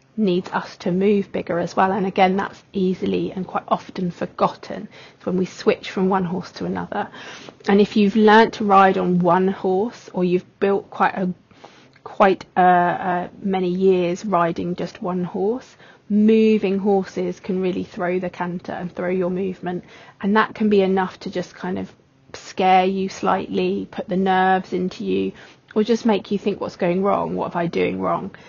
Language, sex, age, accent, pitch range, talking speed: English, female, 30-49, British, 180-205 Hz, 185 wpm